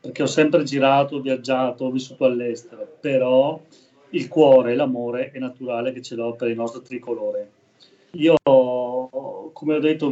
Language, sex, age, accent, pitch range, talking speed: Italian, male, 30-49, native, 125-150 Hz, 160 wpm